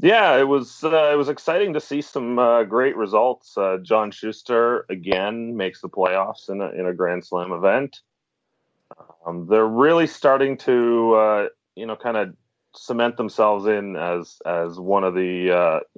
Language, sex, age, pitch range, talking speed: English, male, 30-49, 95-125 Hz, 175 wpm